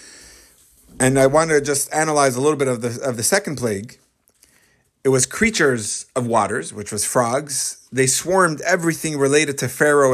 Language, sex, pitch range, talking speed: English, male, 125-160 Hz, 170 wpm